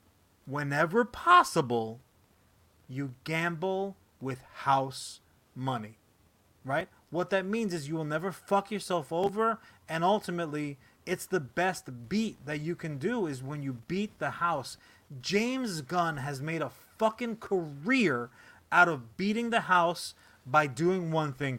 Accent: American